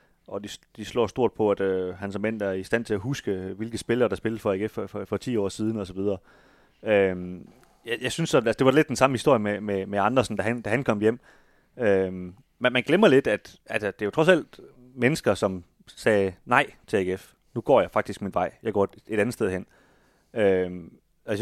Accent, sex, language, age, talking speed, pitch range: native, male, Danish, 30-49, 245 wpm, 100-120 Hz